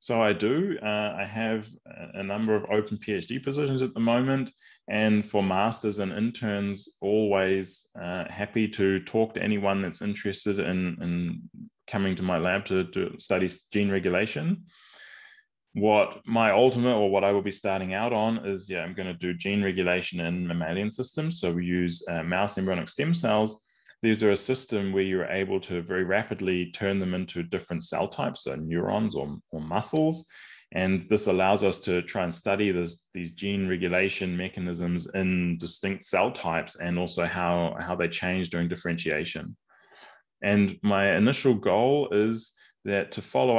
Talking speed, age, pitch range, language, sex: 170 wpm, 20-39, 90-110 Hz, English, male